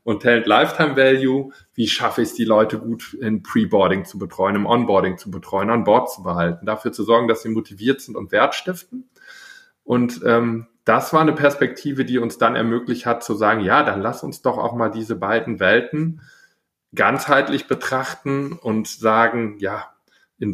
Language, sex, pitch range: German, male, 100-145 Hz